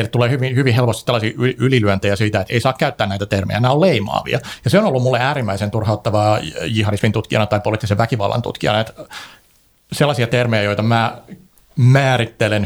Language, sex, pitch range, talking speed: Finnish, male, 105-130 Hz, 165 wpm